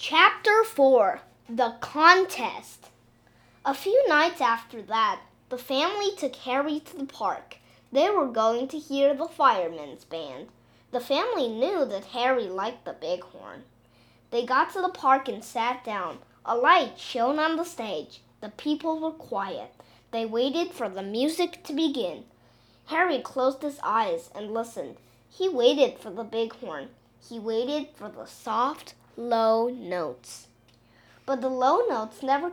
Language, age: Chinese, 20-39